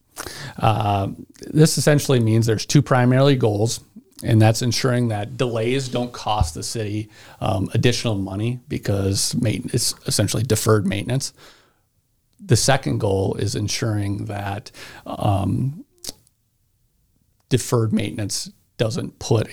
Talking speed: 115 wpm